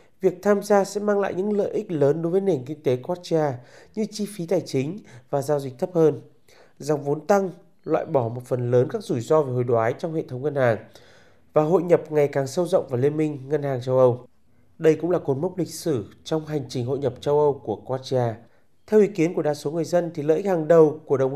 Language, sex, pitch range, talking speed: Vietnamese, male, 135-180 Hz, 255 wpm